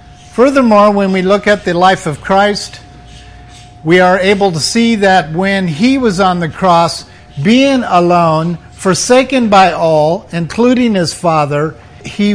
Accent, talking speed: American, 145 wpm